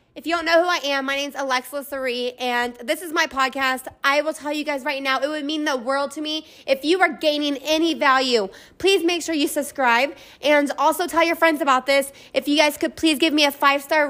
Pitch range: 275-315 Hz